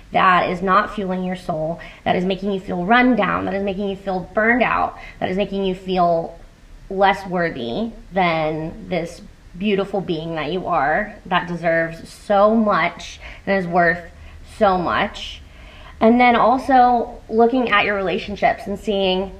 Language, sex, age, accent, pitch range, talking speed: English, female, 20-39, American, 170-220 Hz, 160 wpm